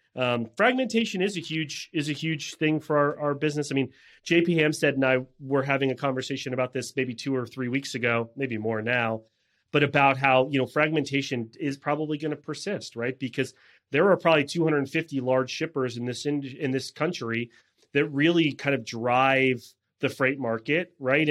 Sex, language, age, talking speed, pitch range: male, English, 30-49, 190 wpm, 120-150 Hz